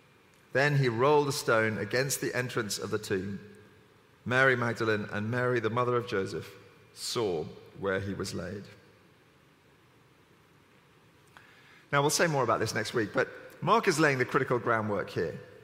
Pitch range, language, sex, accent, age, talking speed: 125-165 Hz, English, male, British, 40-59, 155 wpm